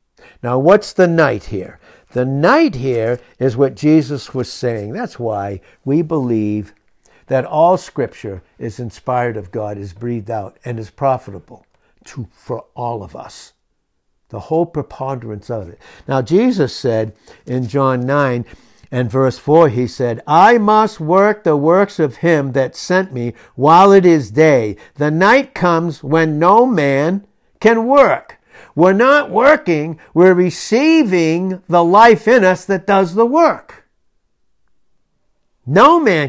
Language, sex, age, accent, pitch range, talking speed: English, male, 60-79, American, 125-195 Hz, 145 wpm